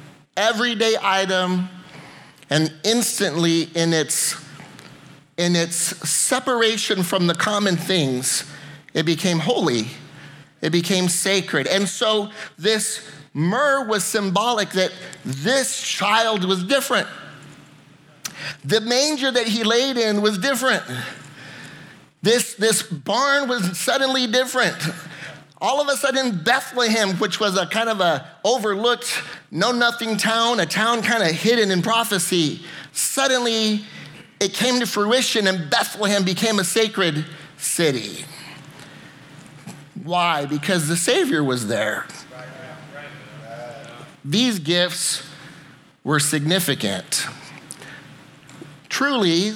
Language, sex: English, male